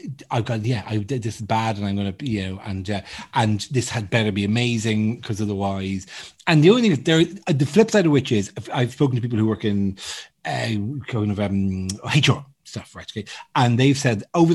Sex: male